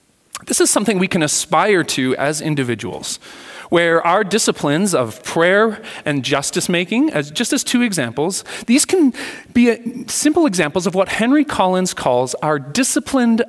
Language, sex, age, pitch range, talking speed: English, male, 30-49, 150-235 Hz, 150 wpm